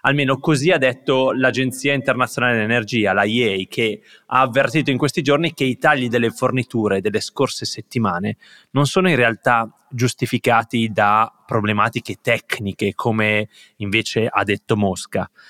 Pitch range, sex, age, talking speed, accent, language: 110-135 Hz, male, 30-49, 135 wpm, native, Italian